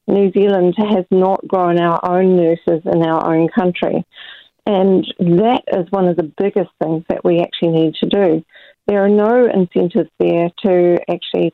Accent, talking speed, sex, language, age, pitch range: Australian, 170 wpm, female, English, 40-59, 175-210 Hz